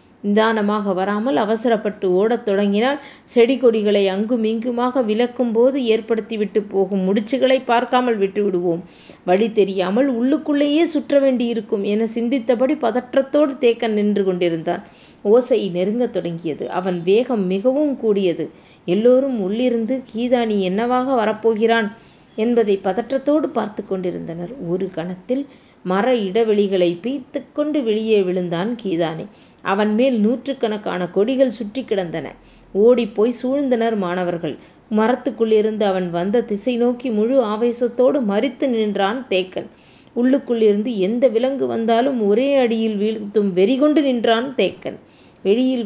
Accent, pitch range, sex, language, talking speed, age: native, 200-250 Hz, female, Tamil, 110 wpm, 30-49